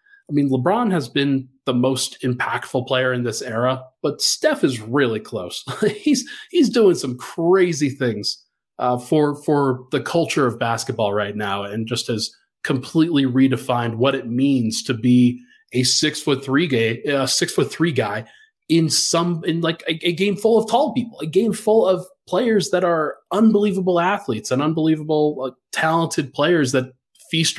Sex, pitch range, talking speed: male, 125-170 Hz, 170 wpm